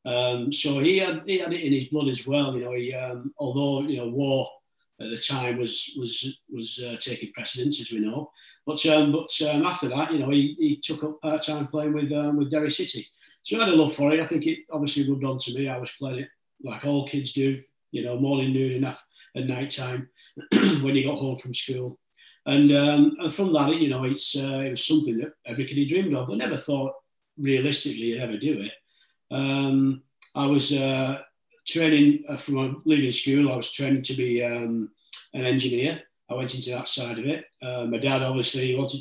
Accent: British